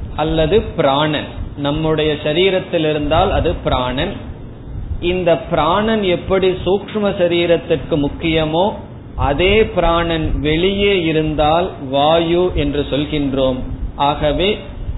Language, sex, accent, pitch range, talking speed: Tamil, male, native, 135-175 Hz, 70 wpm